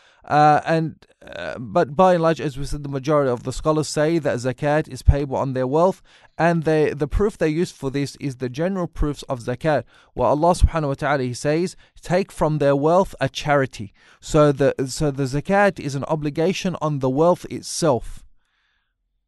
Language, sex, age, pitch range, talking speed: English, male, 30-49, 140-170 Hz, 195 wpm